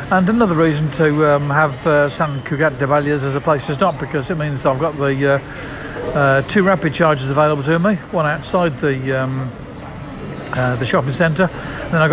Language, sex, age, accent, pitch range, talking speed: English, male, 50-69, British, 145-180 Hz, 205 wpm